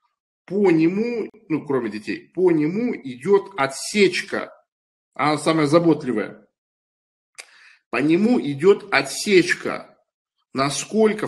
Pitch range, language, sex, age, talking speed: 135-220 Hz, Russian, male, 50-69, 90 wpm